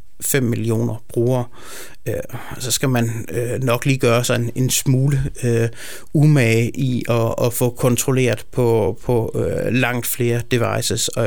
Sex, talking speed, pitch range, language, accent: male, 110 wpm, 115-135 Hz, Danish, native